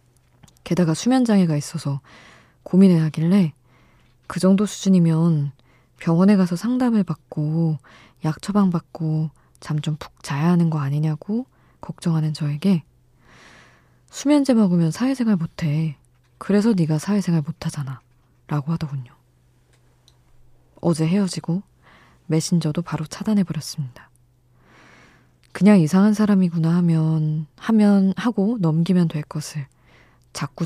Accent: native